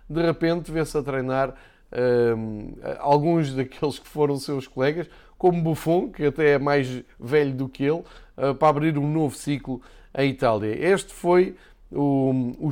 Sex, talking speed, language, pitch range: male, 165 wpm, Portuguese, 130-155 Hz